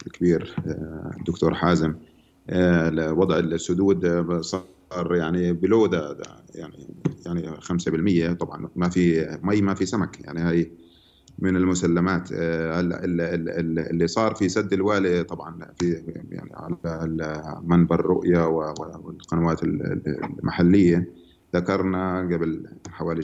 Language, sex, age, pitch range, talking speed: Arabic, male, 30-49, 85-95 Hz, 100 wpm